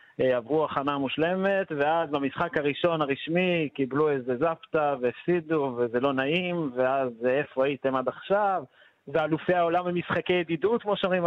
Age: 30-49